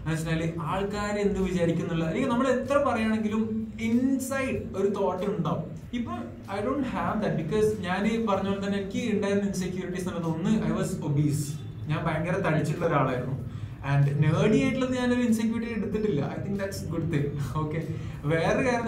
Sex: male